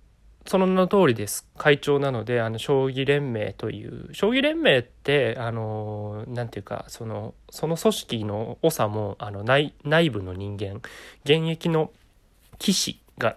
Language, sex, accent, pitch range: Japanese, male, native, 105-165 Hz